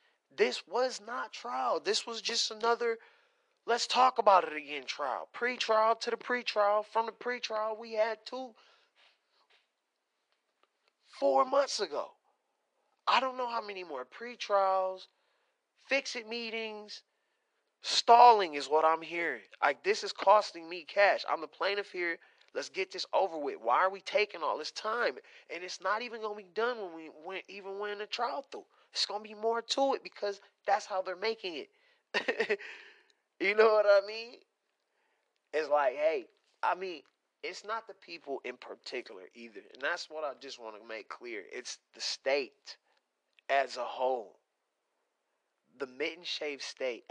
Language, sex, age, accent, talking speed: English, male, 20-39, American, 160 wpm